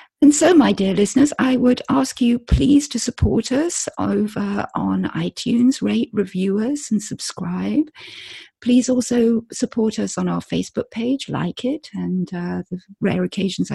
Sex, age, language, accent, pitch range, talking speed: female, 50-69, English, British, 165-240 Hz, 155 wpm